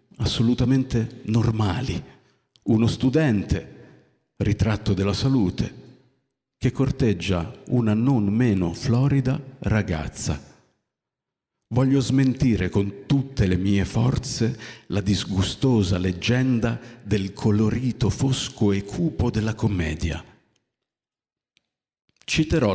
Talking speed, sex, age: 85 wpm, male, 50-69